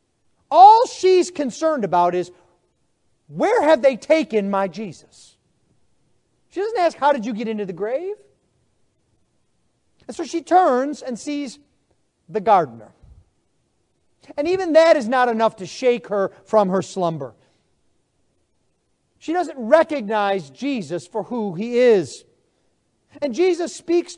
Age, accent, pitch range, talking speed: 40-59, American, 205-290 Hz, 130 wpm